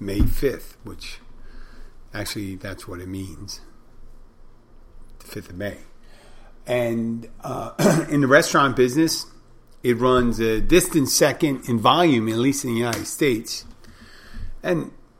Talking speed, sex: 125 wpm, male